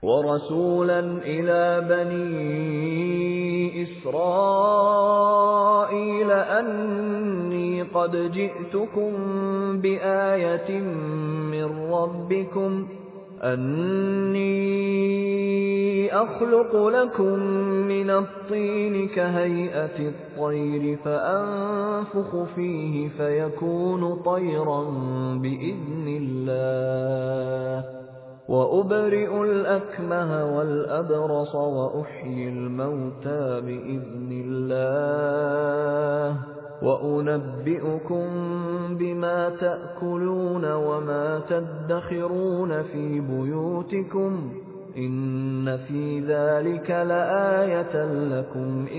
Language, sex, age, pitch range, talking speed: Persian, male, 30-49, 145-195 Hz, 50 wpm